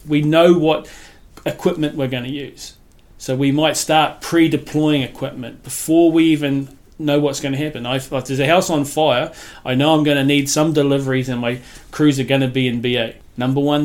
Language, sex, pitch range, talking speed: English, male, 125-145 Hz, 205 wpm